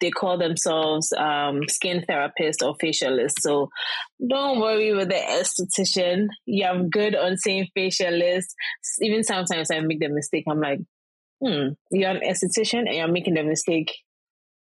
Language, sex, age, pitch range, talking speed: English, female, 20-39, 160-190 Hz, 150 wpm